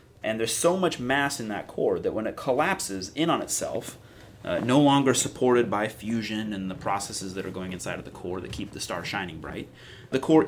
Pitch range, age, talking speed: 100-135 Hz, 30-49, 225 wpm